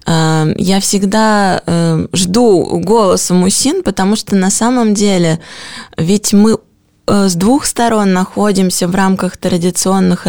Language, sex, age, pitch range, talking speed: Russian, female, 20-39, 190-235 Hz, 110 wpm